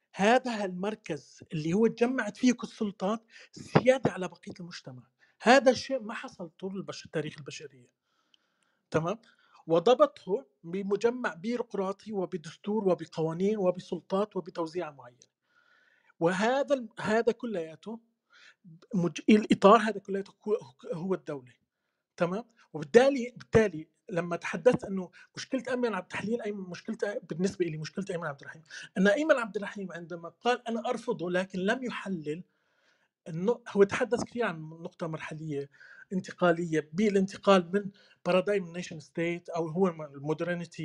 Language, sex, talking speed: Arabic, male, 125 wpm